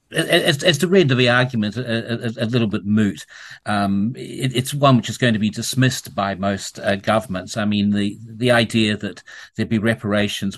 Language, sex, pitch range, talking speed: English, male, 100-115 Hz, 205 wpm